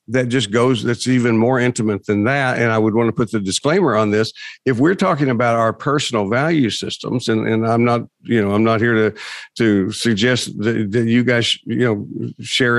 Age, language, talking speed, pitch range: 50-69, English, 215 wpm, 105-125 Hz